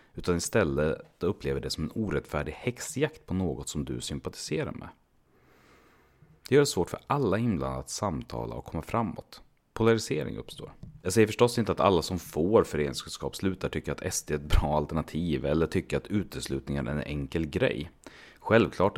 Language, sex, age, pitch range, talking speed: Swedish, male, 30-49, 70-100 Hz, 170 wpm